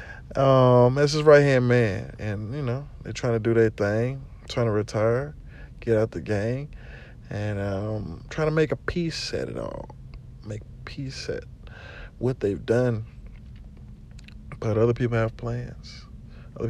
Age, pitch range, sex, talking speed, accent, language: 40-59, 105-125 Hz, male, 160 wpm, American, English